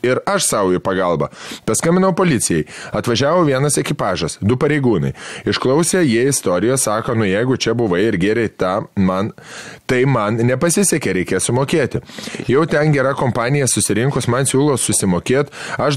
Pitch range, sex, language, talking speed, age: 115-140 Hz, male, English, 140 wpm, 20-39